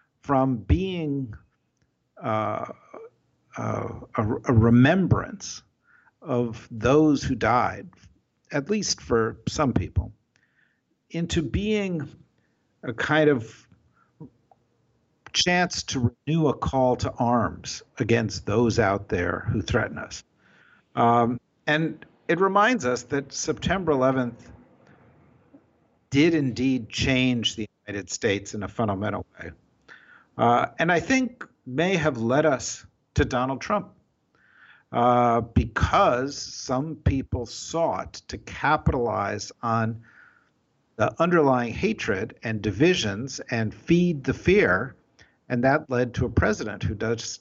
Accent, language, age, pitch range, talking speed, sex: American, English, 50-69, 110-145 Hz, 115 wpm, male